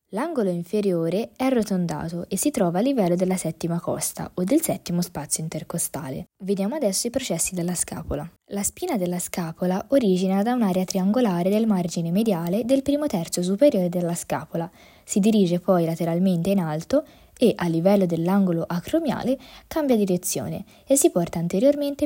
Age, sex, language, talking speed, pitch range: 20-39, female, Italian, 155 wpm, 175-235 Hz